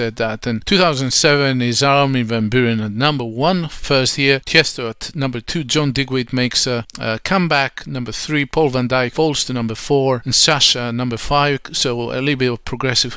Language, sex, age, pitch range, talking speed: English, male, 40-59, 120-150 Hz, 185 wpm